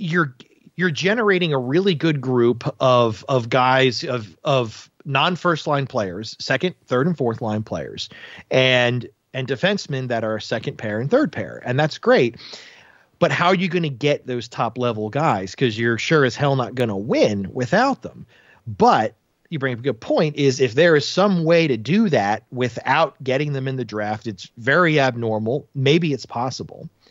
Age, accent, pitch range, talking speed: 30-49, American, 120-160 Hz, 185 wpm